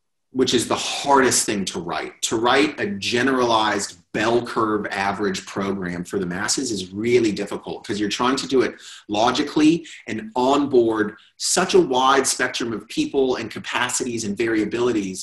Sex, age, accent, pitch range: male, 30-49, American, 115-160 Hz